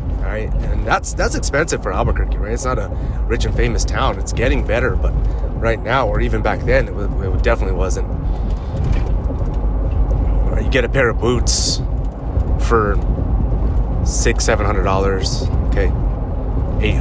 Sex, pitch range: male, 85-100 Hz